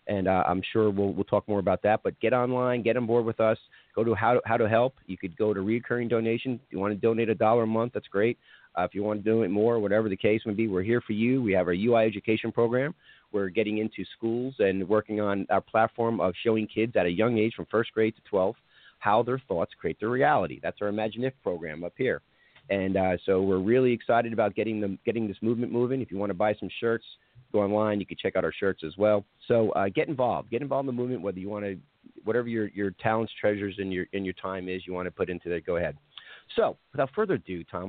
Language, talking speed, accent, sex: English, 260 wpm, American, male